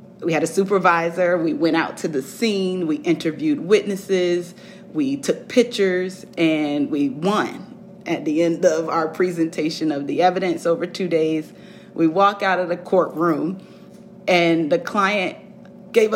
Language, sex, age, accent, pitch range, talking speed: English, female, 30-49, American, 155-195 Hz, 150 wpm